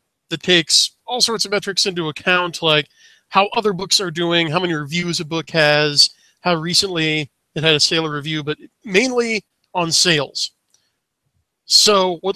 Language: English